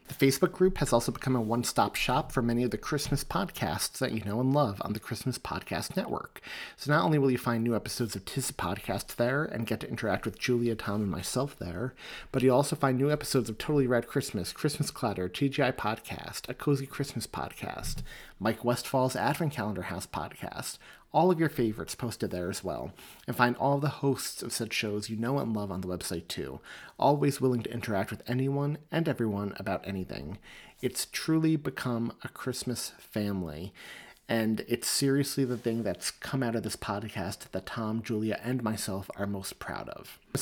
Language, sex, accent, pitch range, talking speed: English, male, American, 105-135 Hz, 195 wpm